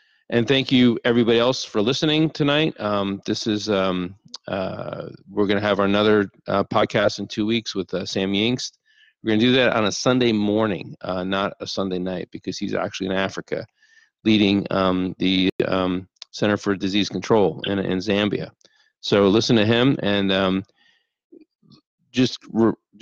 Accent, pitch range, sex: American, 95-120 Hz, male